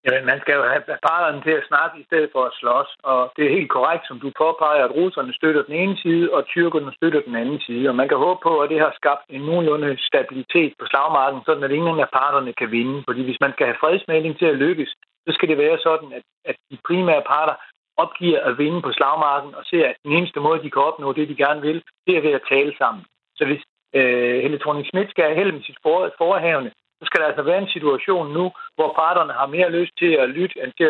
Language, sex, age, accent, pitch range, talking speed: Danish, male, 60-79, native, 140-175 Hz, 245 wpm